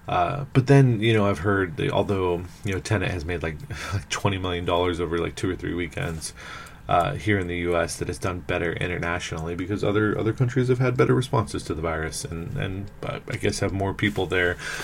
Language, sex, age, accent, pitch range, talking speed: English, male, 20-39, American, 90-110 Hz, 210 wpm